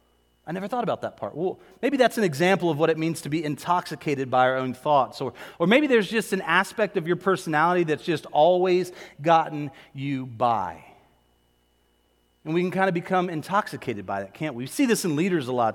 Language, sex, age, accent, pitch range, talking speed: English, male, 30-49, American, 140-190 Hz, 215 wpm